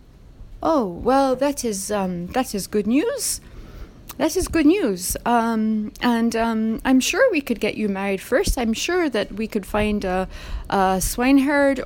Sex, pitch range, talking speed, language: female, 190-260 Hz, 165 wpm, English